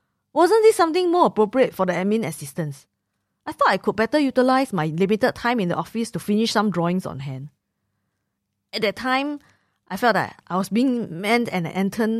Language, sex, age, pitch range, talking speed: English, female, 20-39, 165-215 Hz, 190 wpm